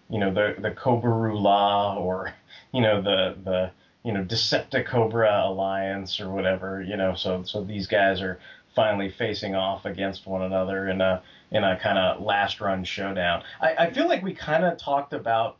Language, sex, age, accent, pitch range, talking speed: English, male, 30-49, American, 95-115 Hz, 180 wpm